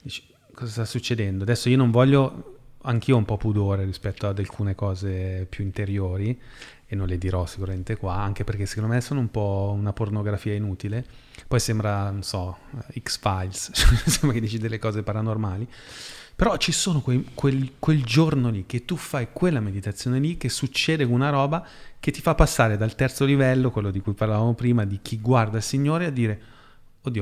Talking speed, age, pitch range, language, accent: 185 wpm, 30-49, 100-130 Hz, Italian, native